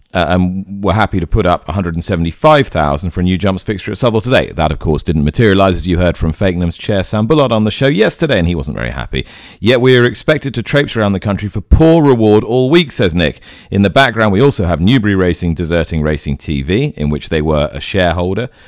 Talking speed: 230 wpm